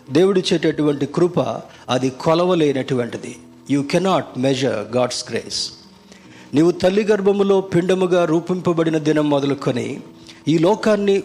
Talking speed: 100 wpm